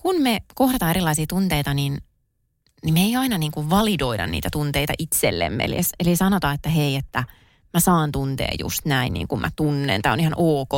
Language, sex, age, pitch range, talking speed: Finnish, female, 20-39, 140-190 Hz, 185 wpm